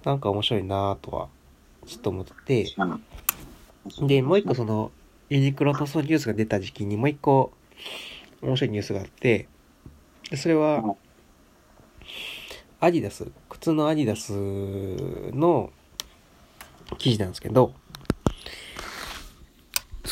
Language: Japanese